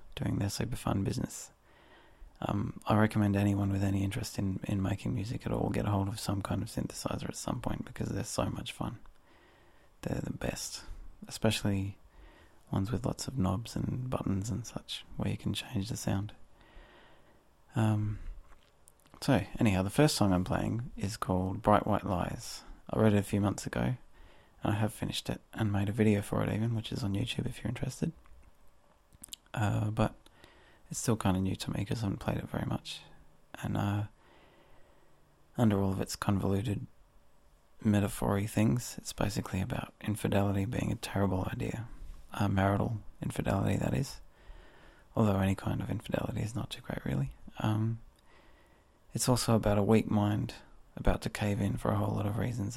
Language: English